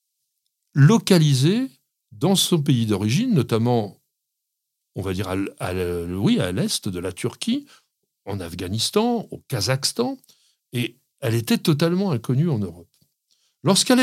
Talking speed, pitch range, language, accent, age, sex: 115 wpm, 115-185 Hz, French, French, 60-79, male